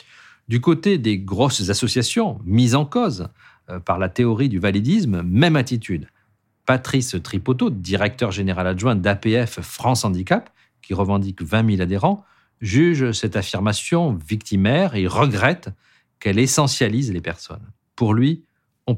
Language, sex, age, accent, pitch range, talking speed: French, male, 50-69, French, 95-125 Hz, 130 wpm